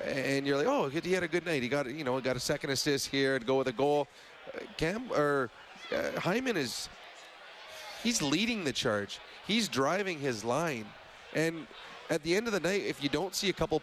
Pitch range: 135-165 Hz